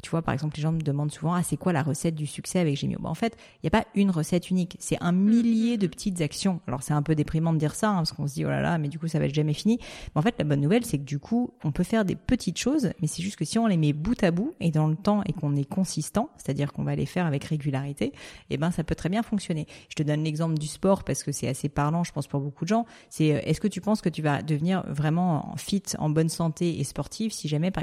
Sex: female